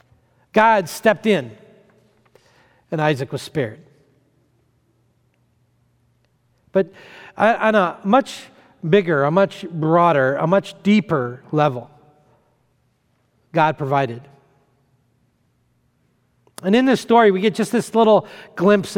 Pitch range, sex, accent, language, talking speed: 130-195 Hz, male, American, English, 100 wpm